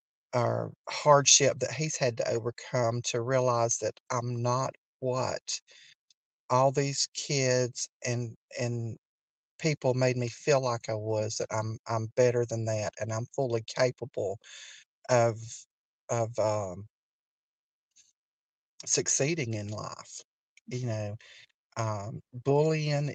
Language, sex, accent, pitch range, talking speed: English, male, American, 115-135 Hz, 115 wpm